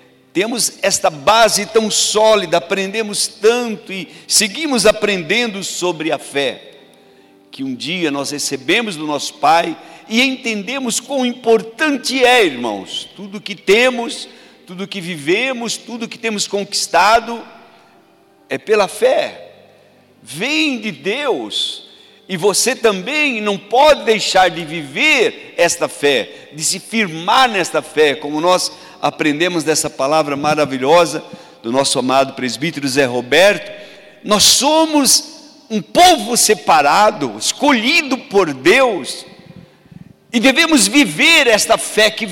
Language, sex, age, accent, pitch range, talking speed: Portuguese, male, 60-79, Brazilian, 170-260 Hz, 120 wpm